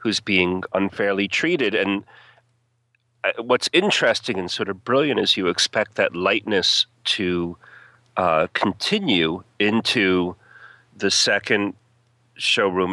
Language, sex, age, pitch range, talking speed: English, male, 40-59, 95-120 Hz, 105 wpm